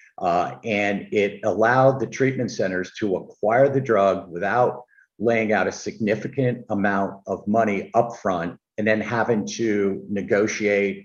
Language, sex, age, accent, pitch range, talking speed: English, male, 50-69, American, 105-130 Hz, 135 wpm